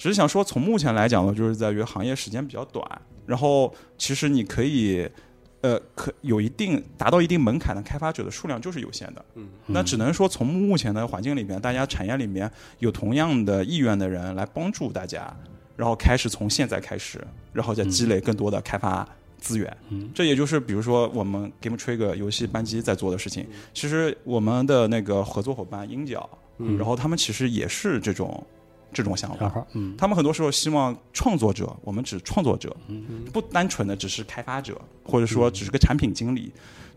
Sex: male